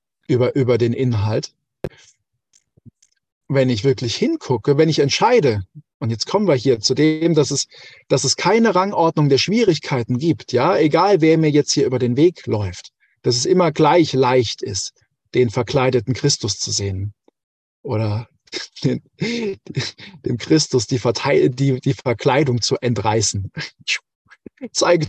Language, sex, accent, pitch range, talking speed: German, male, German, 120-160 Hz, 140 wpm